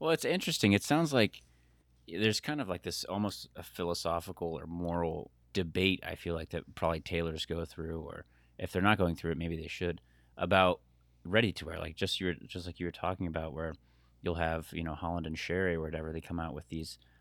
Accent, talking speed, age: American, 220 wpm, 30-49